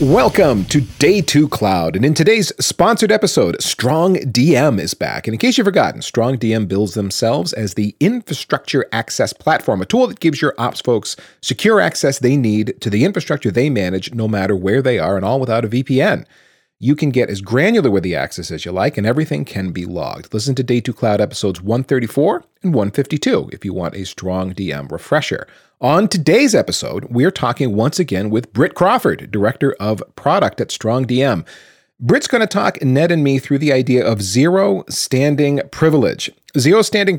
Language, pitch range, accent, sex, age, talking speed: English, 110-155 Hz, American, male, 40-59, 185 wpm